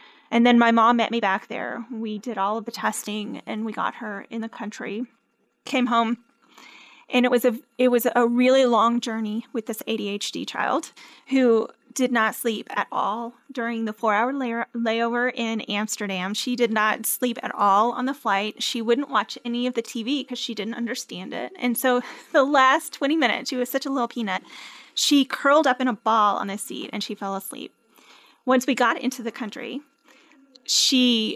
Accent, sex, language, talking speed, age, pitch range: American, female, English, 195 wpm, 30-49, 220-250 Hz